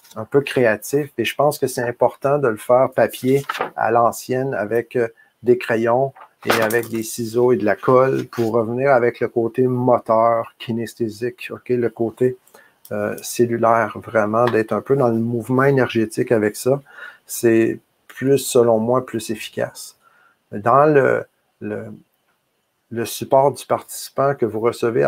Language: French